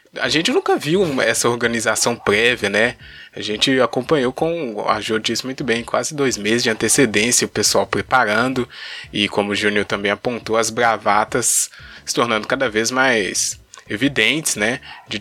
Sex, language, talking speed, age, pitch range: male, Portuguese, 160 wpm, 20-39, 115-175 Hz